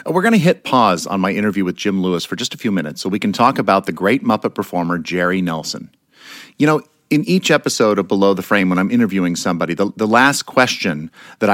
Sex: male